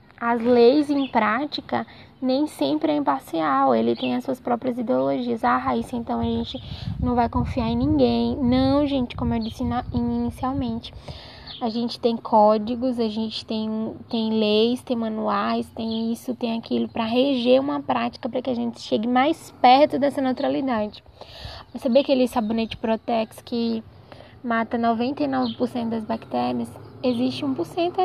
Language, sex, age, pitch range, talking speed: Portuguese, female, 10-29, 225-270 Hz, 150 wpm